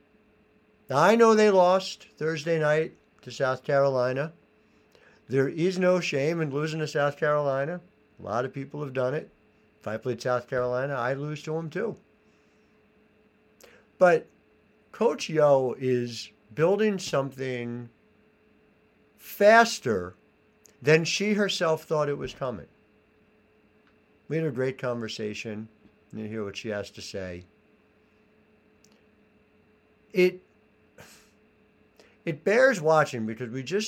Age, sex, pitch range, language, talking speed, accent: 60-79, male, 125-185 Hz, English, 120 wpm, American